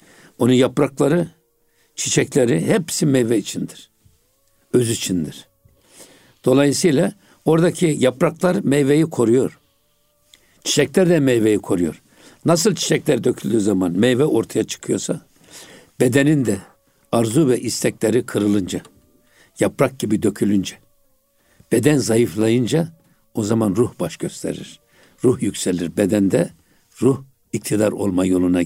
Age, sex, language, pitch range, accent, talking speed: 60-79, male, Turkish, 105-140 Hz, native, 100 wpm